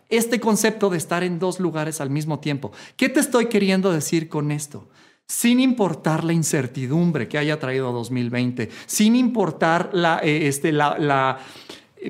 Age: 40-59